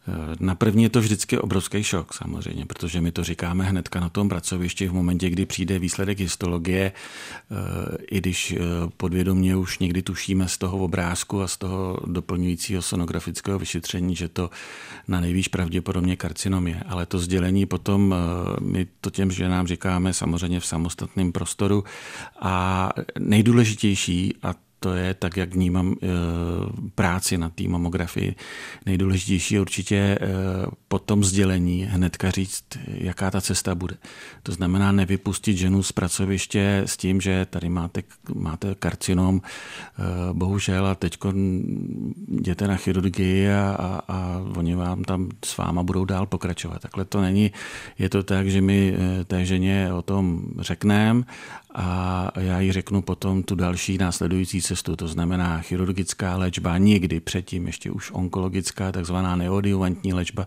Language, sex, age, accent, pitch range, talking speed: Czech, male, 40-59, native, 90-95 Hz, 145 wpm